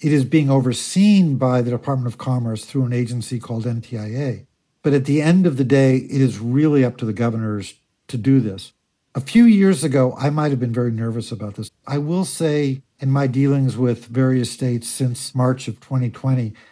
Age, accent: 60-79, American